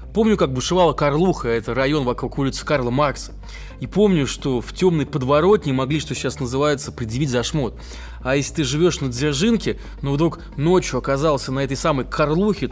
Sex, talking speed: male, 170 wpm